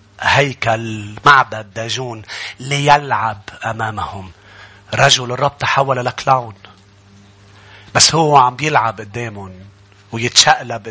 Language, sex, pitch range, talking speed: English, male, 110-140 Hz, 85 wpm